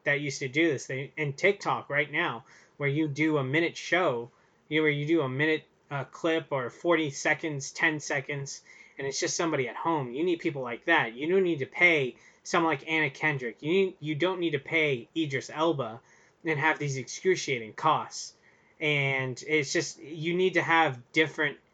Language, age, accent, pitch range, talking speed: English, 20-39, American, 135-170 Hz, 200 wpm